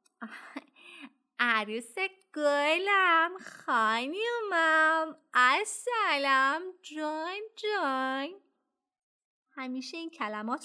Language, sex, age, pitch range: Persian, female, 20-39, 210-310 Hz